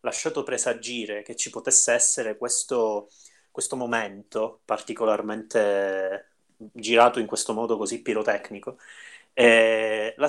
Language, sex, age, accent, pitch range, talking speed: Italian, male, 30-49, native, 105-125 Hz, 100 wpm